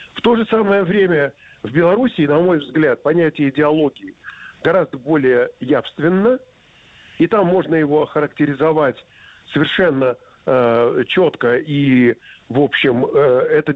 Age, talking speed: 50-69, 120 wpm